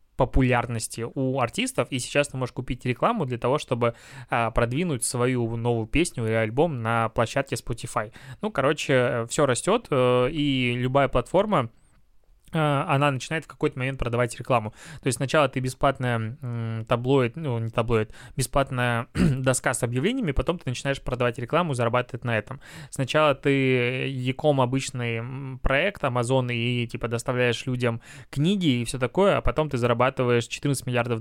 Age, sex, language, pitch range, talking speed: 20-39, male, Russian, 120-140 Hz, 150 wpm